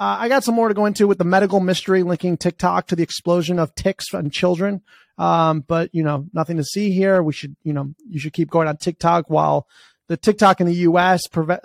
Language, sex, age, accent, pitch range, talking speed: English, male, 30-49, American, 165-210 Hz, 235 wpm